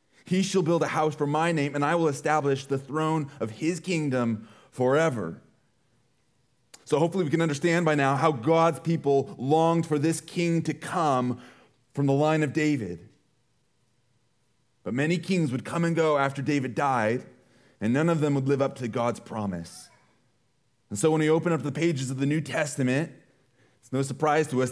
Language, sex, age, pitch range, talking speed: English, male, 30-49, 130-160 Hz, 185 wpm